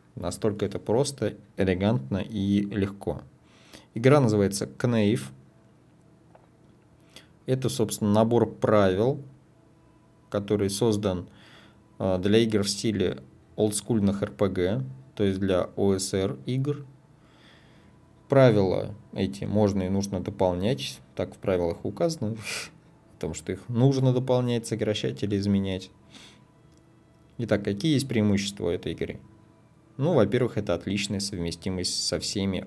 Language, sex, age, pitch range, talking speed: Russian, male, 20-39, 95-120 Hz, 105 wpm